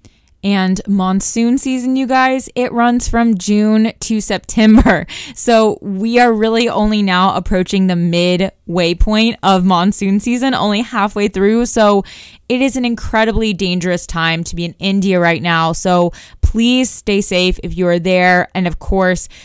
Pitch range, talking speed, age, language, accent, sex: 175-210 Hz, 155 wpm, 20-39, English, American, female